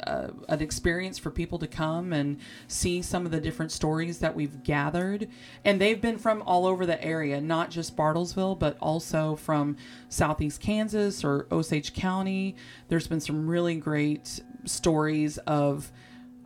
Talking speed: 155 wpm